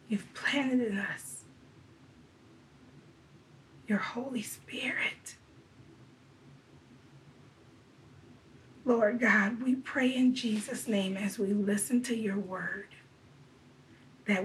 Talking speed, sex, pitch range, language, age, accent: 85 wpm, female, 190-225 Hz, English, 40-59, American